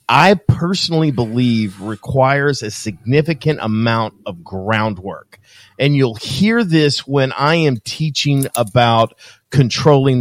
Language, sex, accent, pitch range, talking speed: English, male, American, 120-150 Hz, 110 wpm